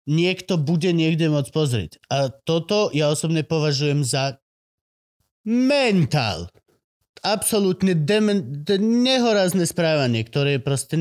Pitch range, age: 145-180 Hz, 30-49